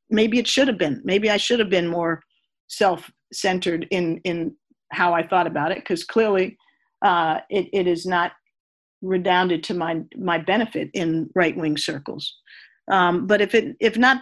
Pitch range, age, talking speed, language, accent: 175-230 Hz, 50-69, 170 wpm, English, American